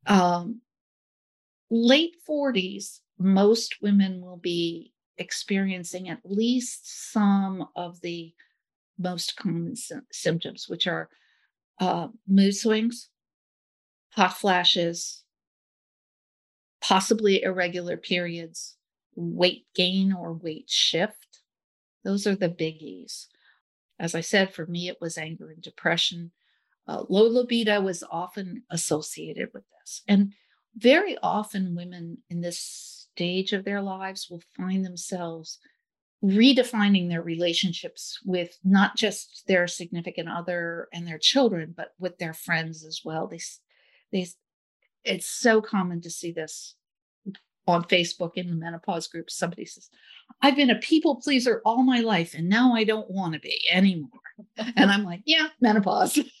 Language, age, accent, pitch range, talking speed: English, 50-69, American, 170-215 Hz, 130 wpm